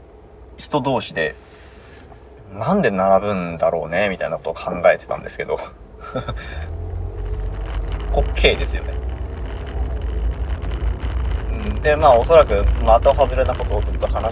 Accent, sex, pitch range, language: native, male, 80-100 Hz, Japanese